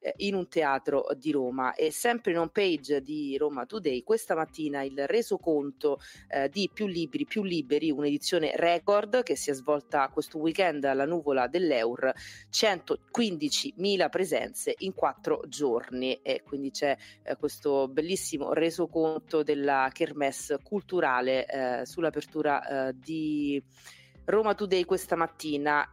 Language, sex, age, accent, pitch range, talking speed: Italian, female, 30-49, native, 145-185 Hz, 130 wpm